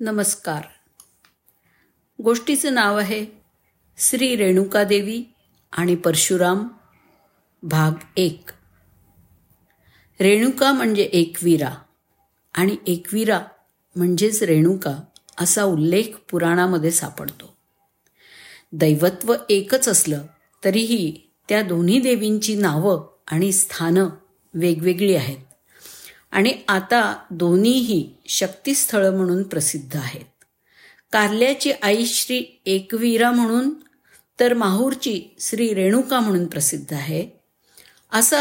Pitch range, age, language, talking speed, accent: 170-230 Hz, 50-69, Marathi, 85 wpm, native